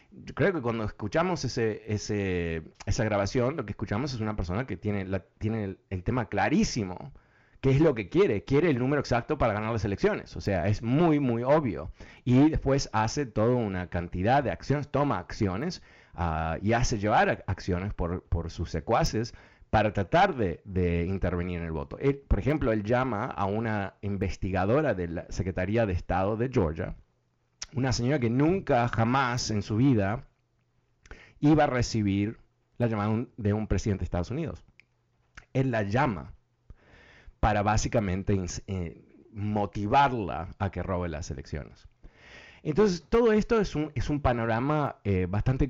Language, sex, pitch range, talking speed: Spanish, male, 95-125 Hz, 165 wpm